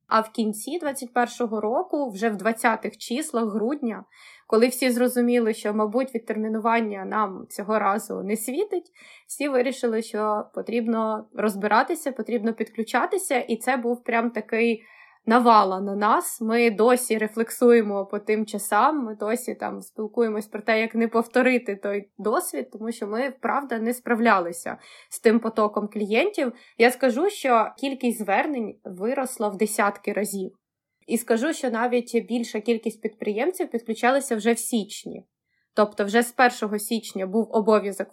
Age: 20-39